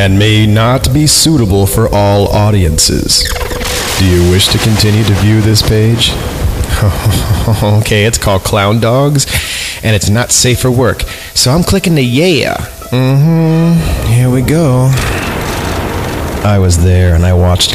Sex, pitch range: male, 90-115 Hz